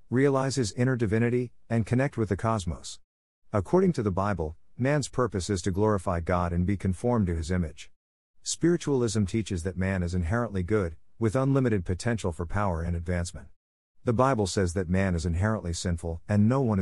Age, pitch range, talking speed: 50-69, 90-115 Hz, 180 wpm